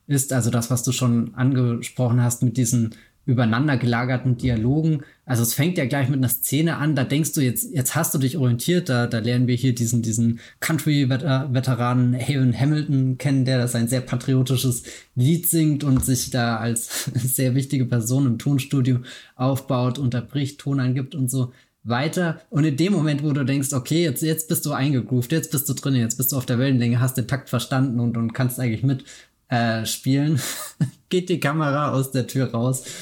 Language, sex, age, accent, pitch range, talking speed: German, male, 20-39, German, 120-140 Hz, 195 wpm